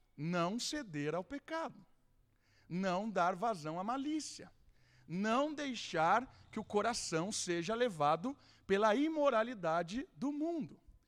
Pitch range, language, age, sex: 160-230 Hz, Portuguese, 50-69, male